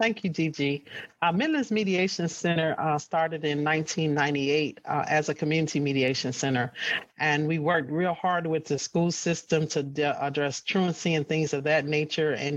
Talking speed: 165 wpm